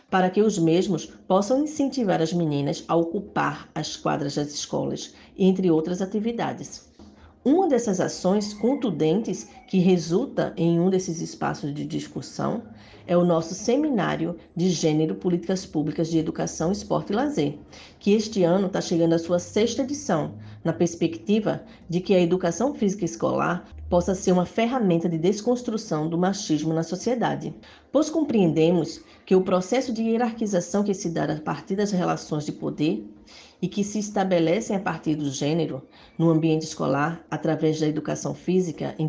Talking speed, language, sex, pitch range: 155 wpm, Portuguese, female, 160-205 Hz